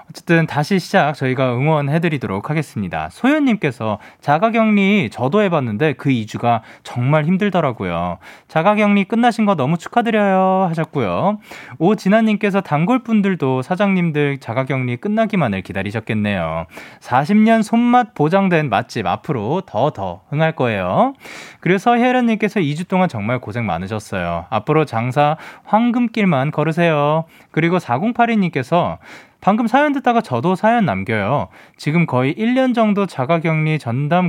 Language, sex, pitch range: Korean, male, 120-200 Hz